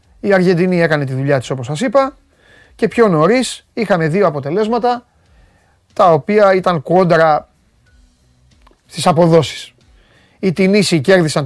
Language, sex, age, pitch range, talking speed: Greek, male, 30-49, 140-195 Hz, 125 wpm